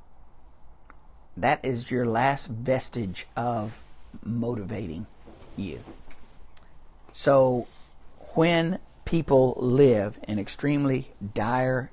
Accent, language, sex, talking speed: American, English, male, 75 wpm